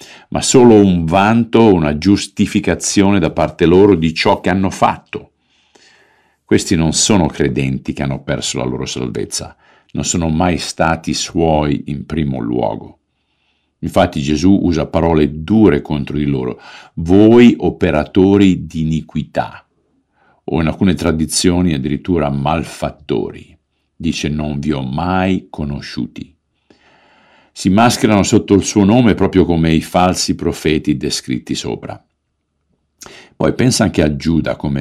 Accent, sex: native, male